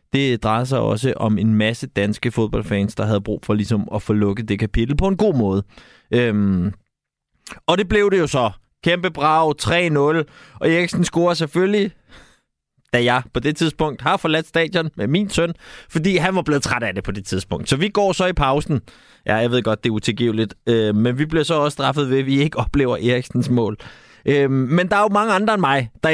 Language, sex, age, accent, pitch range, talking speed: Danish, male, 20-39, native, 110-165 Hz, 215 wpm